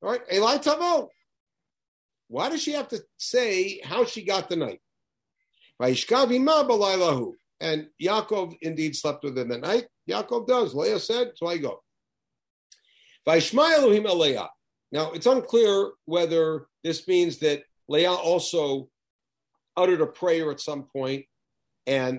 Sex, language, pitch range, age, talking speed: male, English, 145-215 Hz, 50-69, 125 wpm